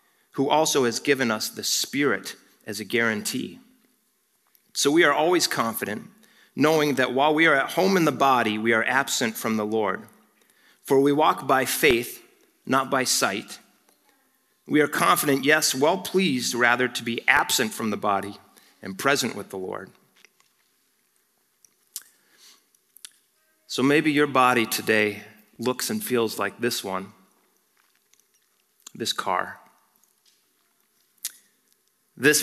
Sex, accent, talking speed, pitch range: male, American, 130 wpm, 115-140 Hz